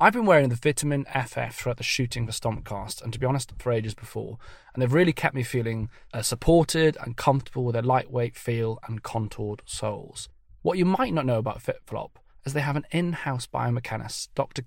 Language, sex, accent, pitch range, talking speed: English, male, British, 115-140 Hz, 205 wpm